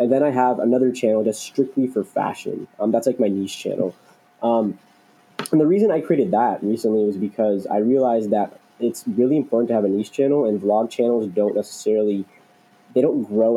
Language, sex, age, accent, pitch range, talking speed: English, male, 20-39, American, 105-125 Hz, 200 wpm